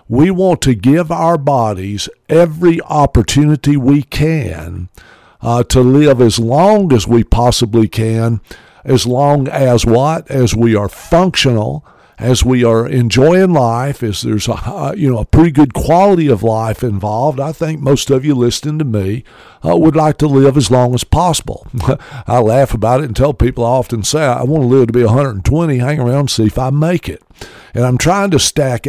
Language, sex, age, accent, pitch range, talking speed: English, male, 50-69, American, 115-150 Hz, 190 wpm